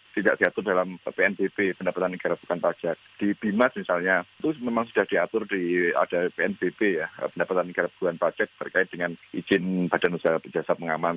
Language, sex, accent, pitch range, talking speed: Indonesian, male, native, 90-110 Hz, 160 wpm